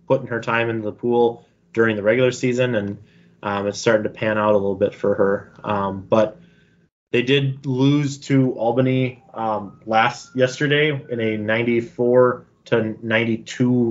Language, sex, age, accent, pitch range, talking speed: English, male, 20-39, American, 110-130 Hz, 160 wpm